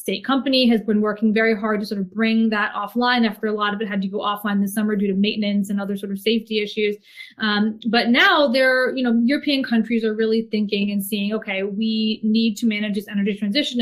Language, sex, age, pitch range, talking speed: English, female, 20-39, 215-245 Hz, 235 wpm